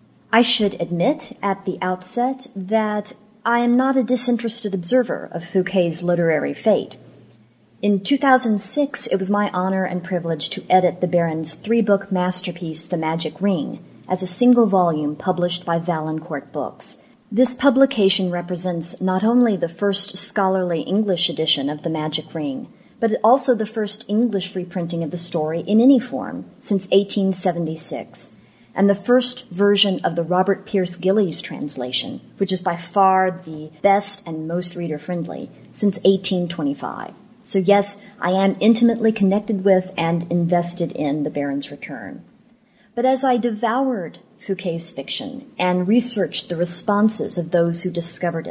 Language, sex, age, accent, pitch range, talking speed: English, female, 30-49, American, 170-220 Hz, 145 wpm